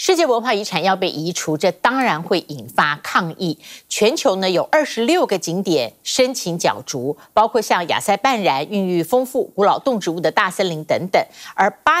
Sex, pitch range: female, 165-250 Hz